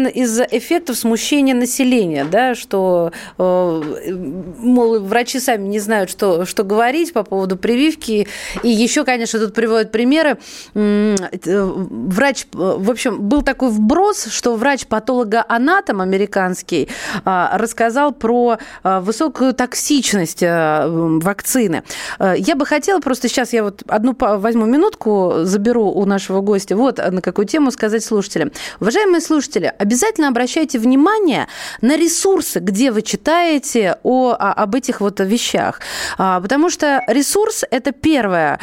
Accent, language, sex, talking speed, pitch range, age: native, Russian, female, 120 wpm, 205-275 Hz, 30-49